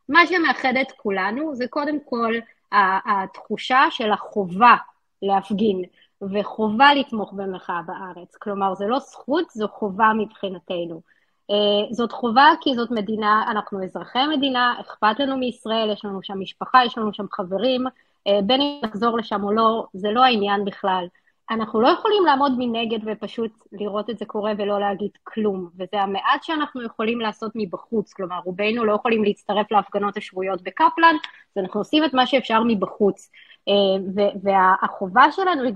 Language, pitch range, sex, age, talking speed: Hebrew, 200-250 Hz, female, 20-39, 150 wpm